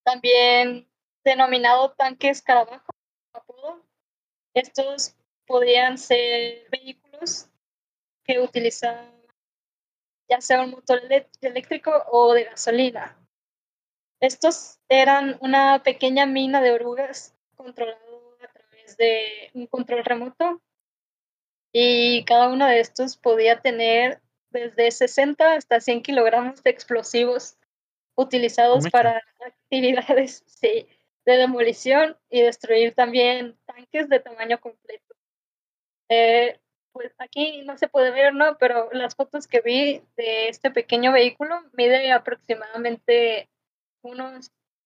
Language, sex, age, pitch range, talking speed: Spanish, female, 20-39, 235-270 Hz, 105 wpm